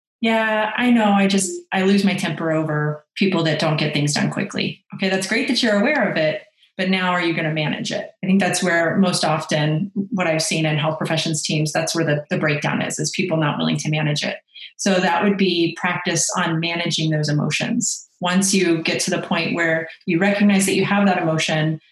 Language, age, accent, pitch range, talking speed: English, 30-49, American, 160-185 Hz, 225 wpm